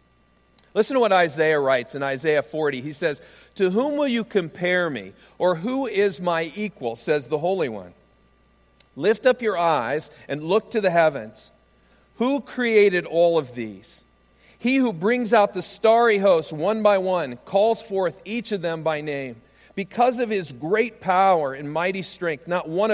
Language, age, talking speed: English, 50-69, 175 wpm